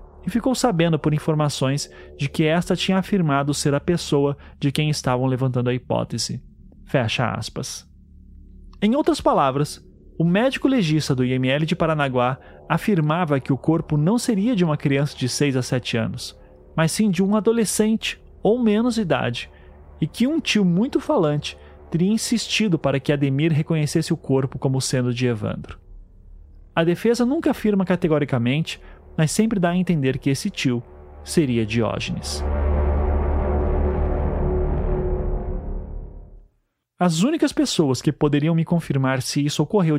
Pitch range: 125-180 Hz